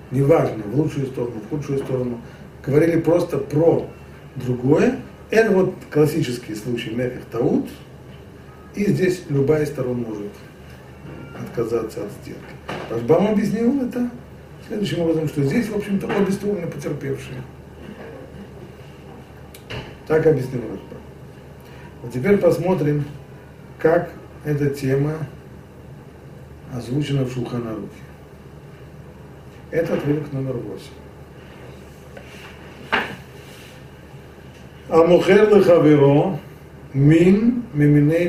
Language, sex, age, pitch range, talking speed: Russian, male, 40-59, 120-165 Hz, 90 wpm